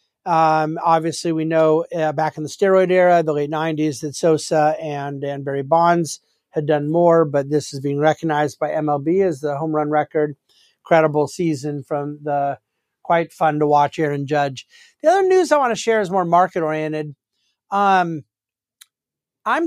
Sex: male